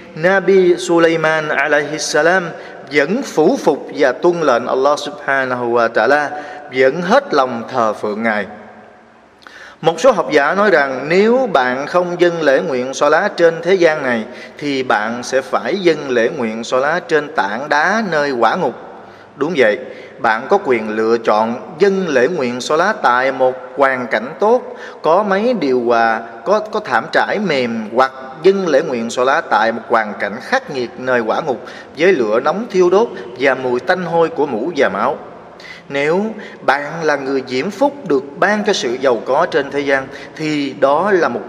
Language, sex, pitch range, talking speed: Vietnamese, male, 130-180 Hz, 180 wpm